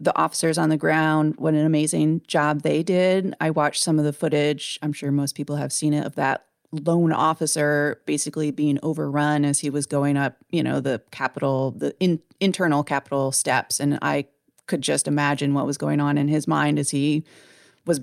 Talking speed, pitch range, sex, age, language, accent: 195 wpm, 145-175 Hz, female, 30-49, English, American